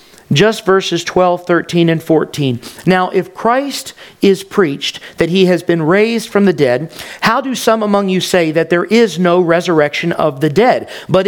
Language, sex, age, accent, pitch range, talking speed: English, male, 50-69, American, 175-240 Hz, 180 wpm